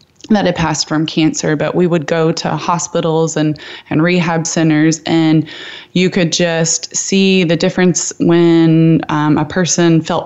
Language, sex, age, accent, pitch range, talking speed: English, female, 20-39, American, 155-180 Hz, 160 wpm